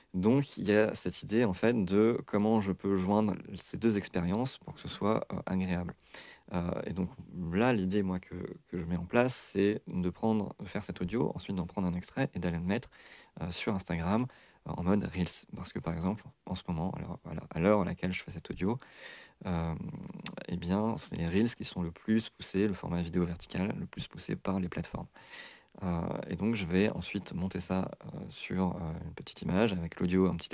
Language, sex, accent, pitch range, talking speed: French, male, French, 90-105 Hz, 220 wpm